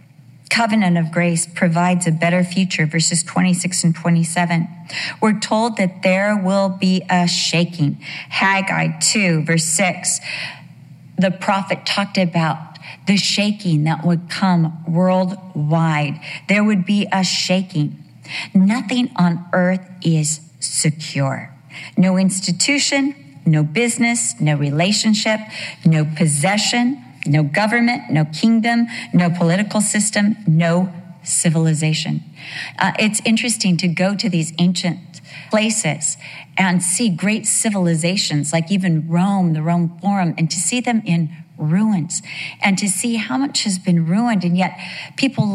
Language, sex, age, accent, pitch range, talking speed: English, female, 40-59, American, 165-205 Hz, 125 wpm